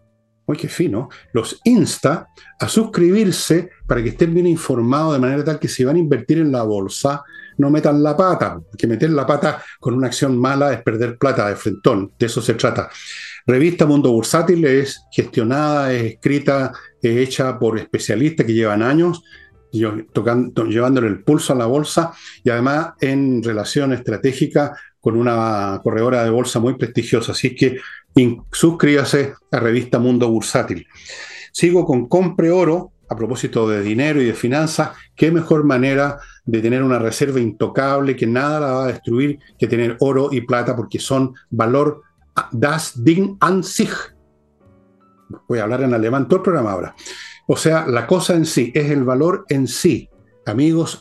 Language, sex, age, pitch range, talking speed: Spanish, male, 50-69, 115-150 Hz, 165 wpm